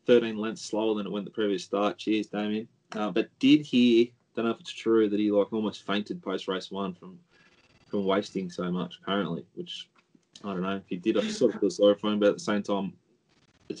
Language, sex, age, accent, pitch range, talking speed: English, male, 20-39, Australian, 105-130 Hz, 230 wpm